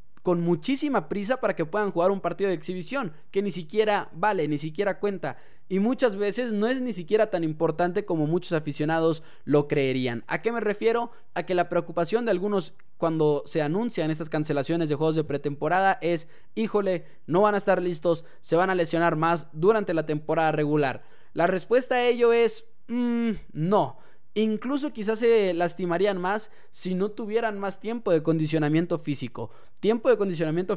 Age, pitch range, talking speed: 20-39, 160-205 Hz, 175 wpm